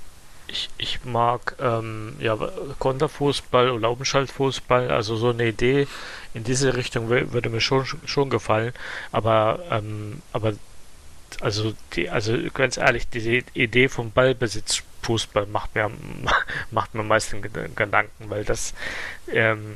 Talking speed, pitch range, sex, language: 130 wpm, 110-125 Hz, male, German